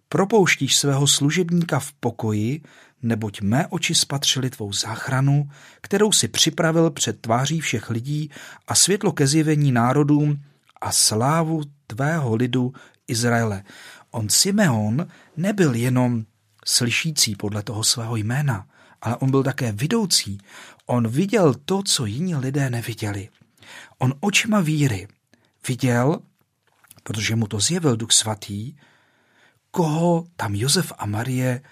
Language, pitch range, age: Czech, 115-155 Hz, 40-59